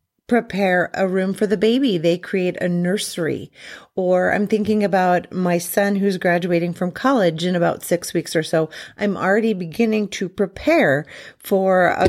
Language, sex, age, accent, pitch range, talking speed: English, female, 40-59, American, 170-210 Hz, 165 wpm